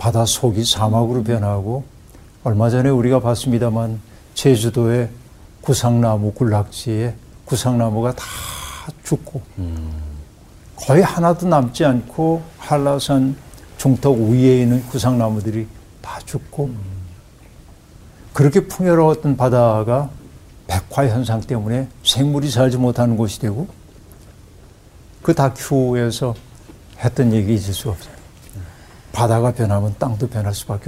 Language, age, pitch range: Korean, 60-79, 105-140 Hz